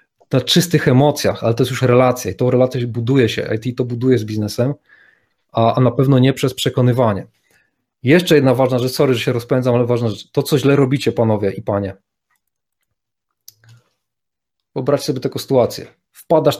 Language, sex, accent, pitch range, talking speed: Polish, male, native, 115-145 Hz, 170 wpm